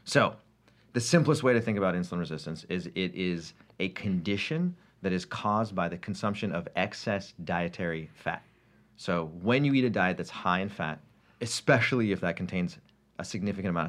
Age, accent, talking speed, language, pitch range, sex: 30-49, American, 175 wpm, English, 85-110 Hz, male